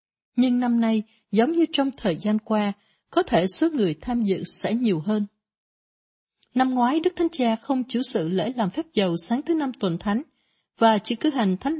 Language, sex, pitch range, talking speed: Vietnamese, female, 195-255 Hz, 205 wpm